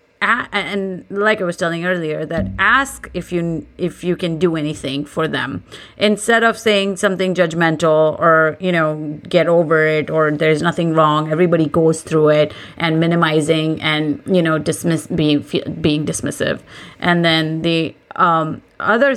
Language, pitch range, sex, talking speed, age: English, 155-185 Hz, female, 165 wpm, 30-49